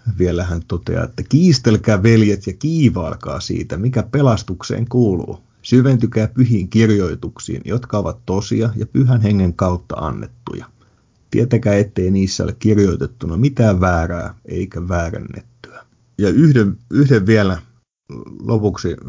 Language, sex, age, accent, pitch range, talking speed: Finnish, male, 30-49, native, 95-115 Hz, 115 wpm